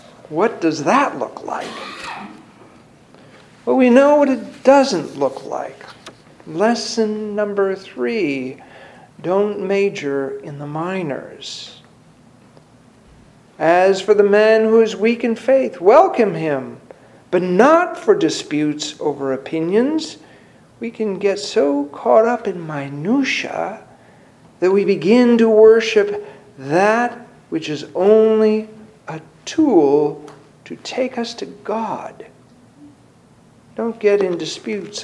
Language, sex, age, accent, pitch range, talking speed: English, male, 50-69, American, 155-225 Hz, 110 wpm